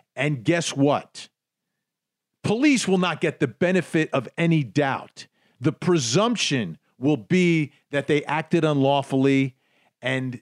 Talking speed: 120 wpm